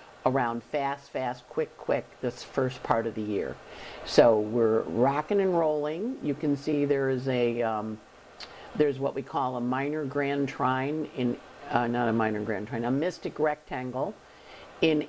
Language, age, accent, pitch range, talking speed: English, 50-69, American, 120-150 Hz, 165 wpm